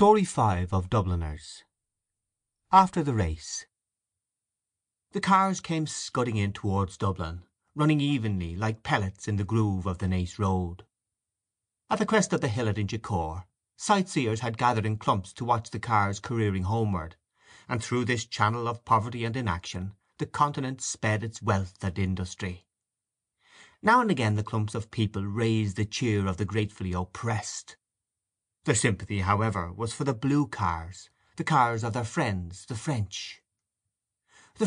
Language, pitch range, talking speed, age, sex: English, 95-120 Hz, 150 wpm, 30-49, male